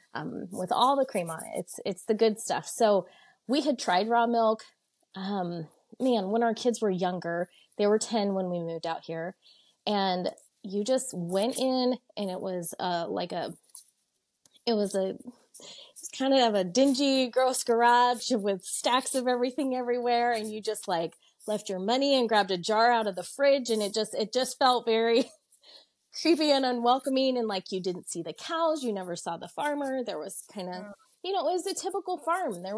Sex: female